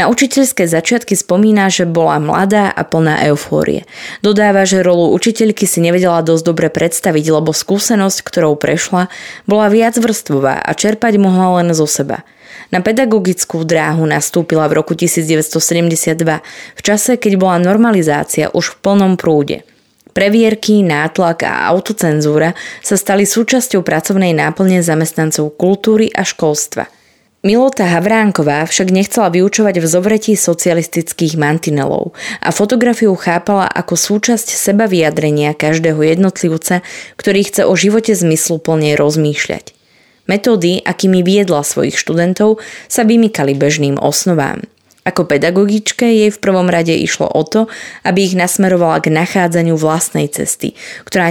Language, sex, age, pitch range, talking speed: Slovak, female, 20-39, 160-205 Hz, 130 wpm